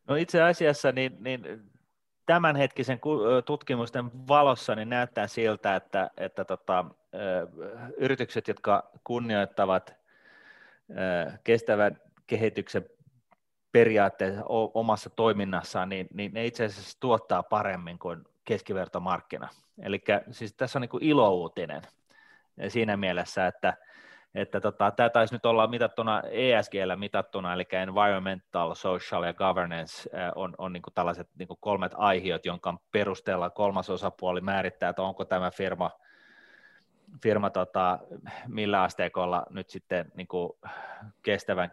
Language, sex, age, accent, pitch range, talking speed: Finnish, male, 30-49, native, 95-120 Hz, 110 wpm